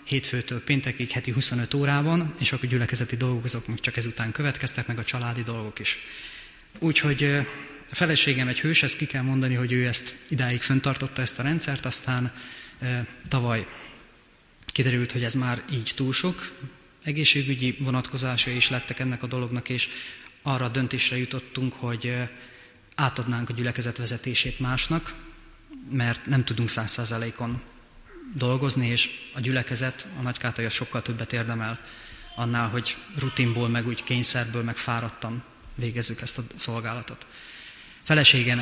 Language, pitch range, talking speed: Hungarian, 120-135 Hz, 140 wpm